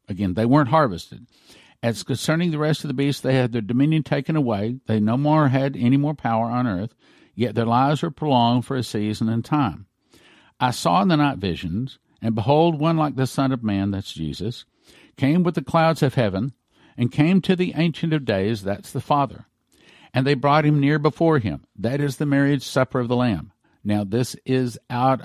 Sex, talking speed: male, 205 wpm